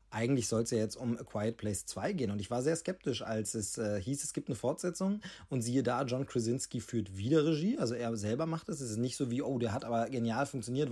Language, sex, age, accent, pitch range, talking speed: German, male, 30-49, German, 115-135 Hz, 265 wpm